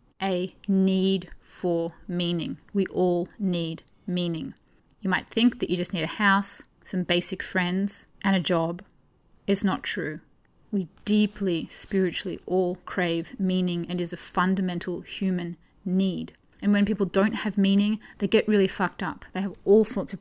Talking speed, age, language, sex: 160 wpm, 30-49, English, female